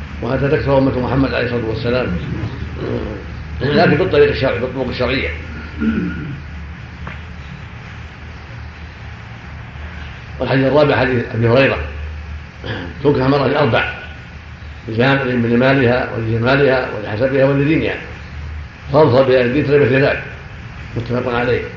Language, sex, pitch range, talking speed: Arabic, male, 110-135 Hz, 85 wpm